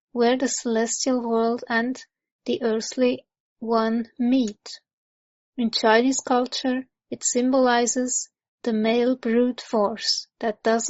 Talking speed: 110 wpm